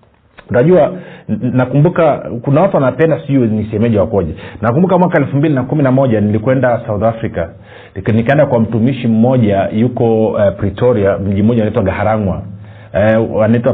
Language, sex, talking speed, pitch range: Swahili, male, 125 wpm, 110-150 Hz